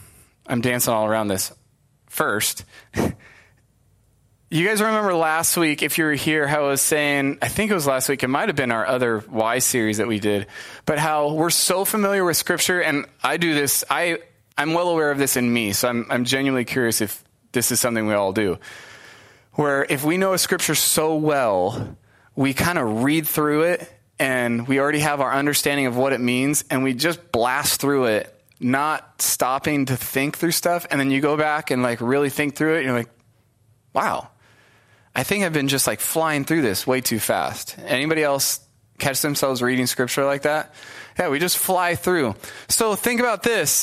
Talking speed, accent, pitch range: 200 wpm, American, 125-165 Hz